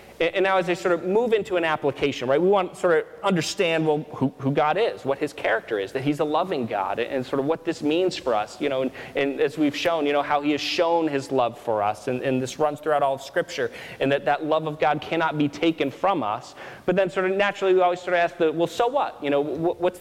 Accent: American